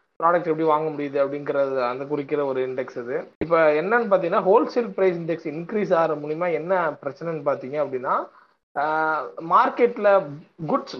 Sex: male